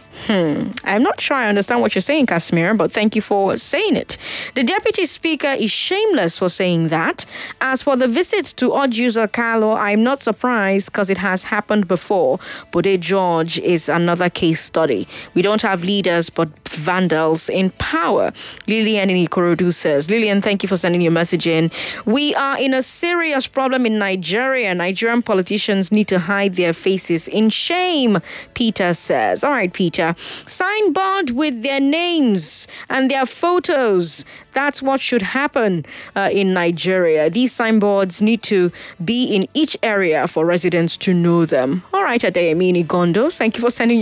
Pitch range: 180-250 Hz